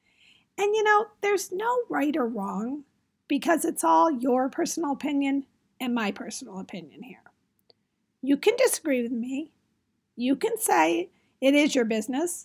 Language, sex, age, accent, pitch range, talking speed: English, female, 40-59, American, 235-300 Hz, 150 wpm